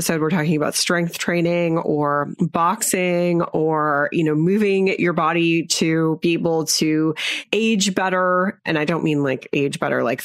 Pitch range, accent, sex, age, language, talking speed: 160-195 Hz, American, female, 30-49, English, 160 wpm